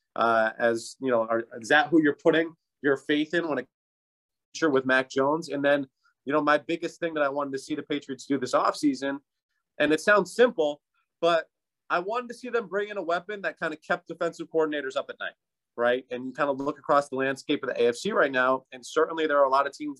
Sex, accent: male, American